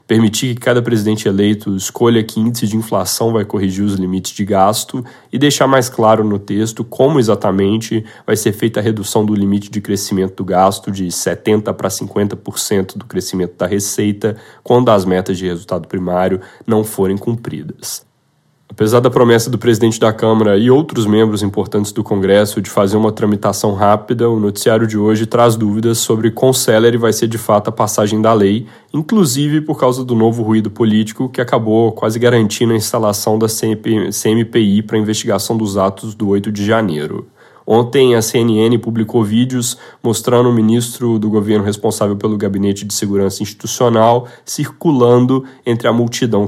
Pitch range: 105-115 Hz